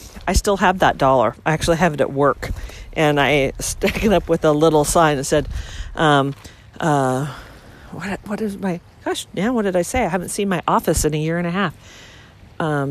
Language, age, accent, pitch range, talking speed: English, 40-59, American, 155-225 Hz, 215 wpm